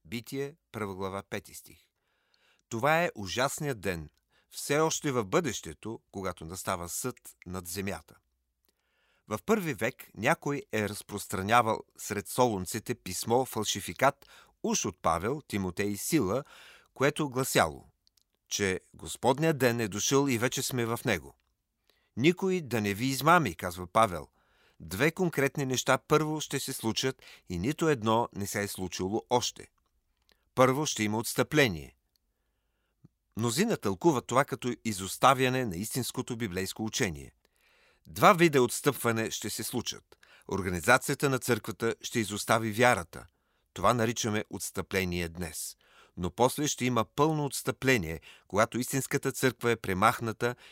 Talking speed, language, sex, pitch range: 130 wpm, Bulgarian, male, 95-130 Hz